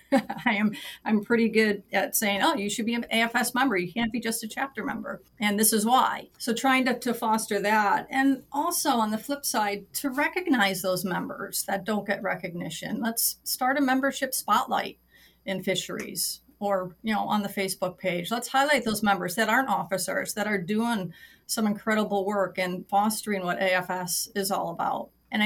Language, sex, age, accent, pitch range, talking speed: English, female, 40-59, American, 190-235 Hz, 190 wpm